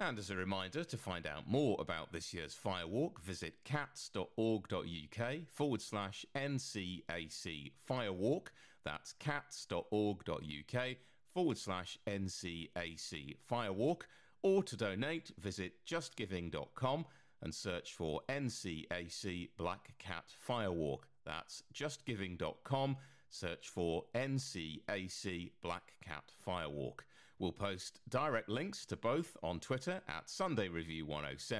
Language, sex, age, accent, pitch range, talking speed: English, male, 40-59, British, 85-125 Hz, 105 wpm